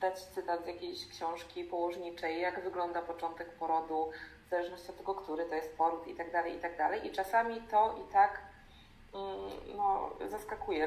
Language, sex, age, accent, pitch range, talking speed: Polish, female, 20-39, native, 175-210 Hz, 165 wpm